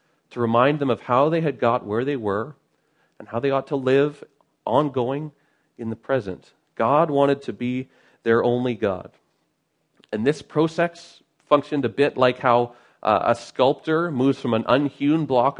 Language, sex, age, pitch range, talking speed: English, male, 40-59, 115-145 Hz, 170 wpm